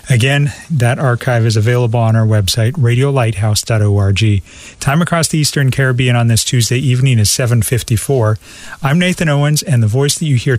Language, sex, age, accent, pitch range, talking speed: English, male, 40-59, American, 115-140 Hz, 165 wpm